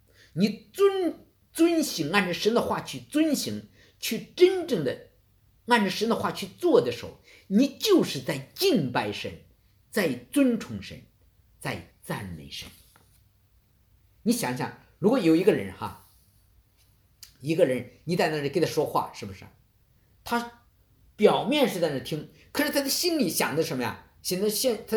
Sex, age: male, 50-69